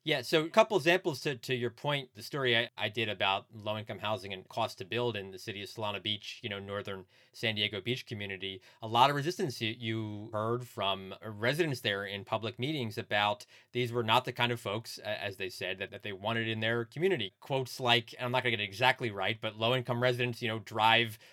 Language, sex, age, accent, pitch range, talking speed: English, male, 30-49, American, 110-140 Hz, 235 wpm